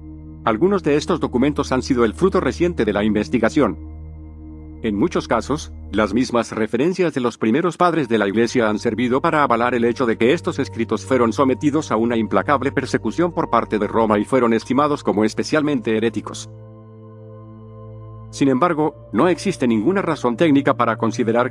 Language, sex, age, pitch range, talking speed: Spanish, male, 50-69, 110-130 Hz, 165 wpm